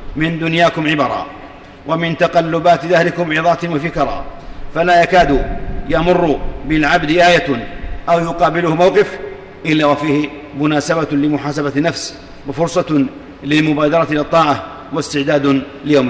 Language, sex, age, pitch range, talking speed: Arabic, male, 40-59, 140-155 Hz, 100 wpm